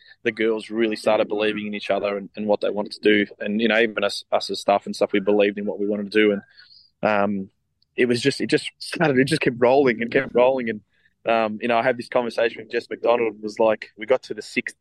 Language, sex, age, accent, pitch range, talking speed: English, male, 20-39, Australian, 105-120 Hz, 280 wpm